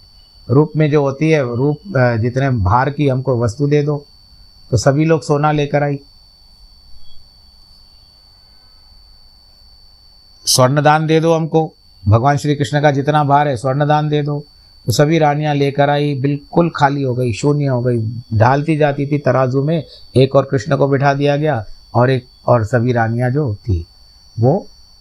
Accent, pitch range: native, 100-135 Hz